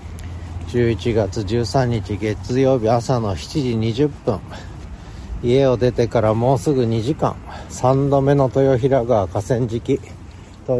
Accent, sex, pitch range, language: native, male, 90-120 Hz, Japanese